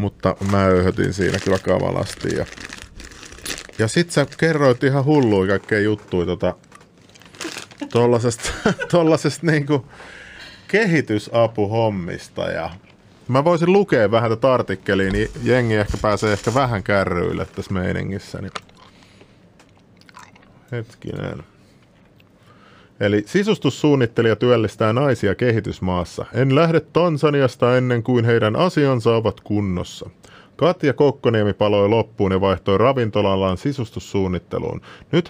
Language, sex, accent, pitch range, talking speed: Finnish, male, native, 100-130 Hz, 100 wpm